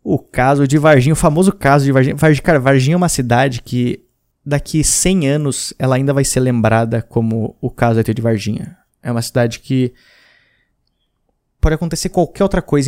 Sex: male